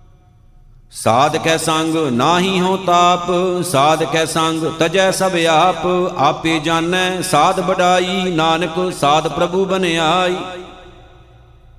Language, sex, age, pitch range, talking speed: Punjabi, male, 60-79, 160-180 Hz, 90 wpm